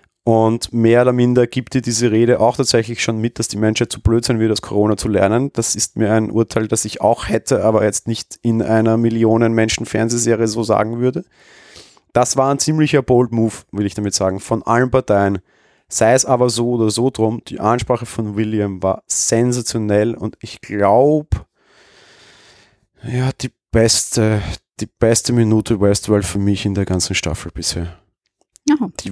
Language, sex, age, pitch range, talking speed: German, male, 30-49, 105-120 Hz, 175 wpm